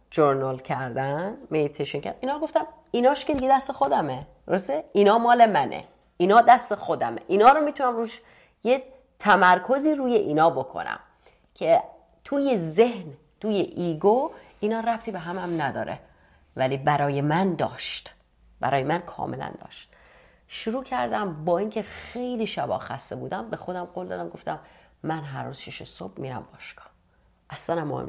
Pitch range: 145-240 Hz